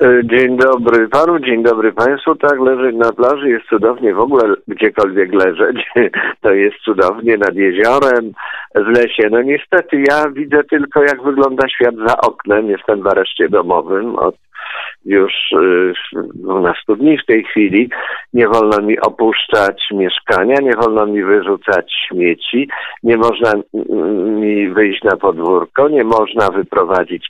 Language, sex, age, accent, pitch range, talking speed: Polish, male, 50-69, native, 115-155 Hz, 135 wpm